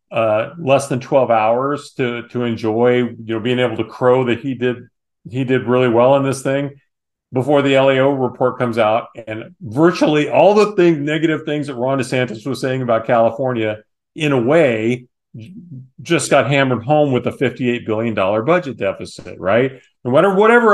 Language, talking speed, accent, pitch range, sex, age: English, 175 wpm, American, 115-140 Hz, male, 40-59